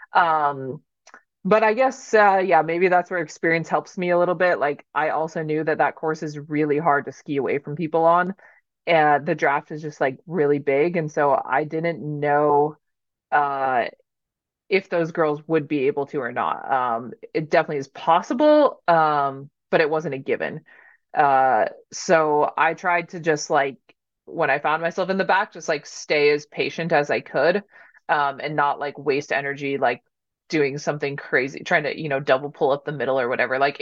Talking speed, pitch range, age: 195 wpm, 145-180 Hz, 20-39